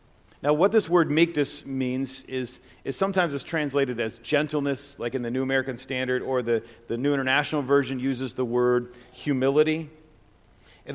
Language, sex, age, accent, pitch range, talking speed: English, male, 40-59, American, 120-155 Hz, 165 wpm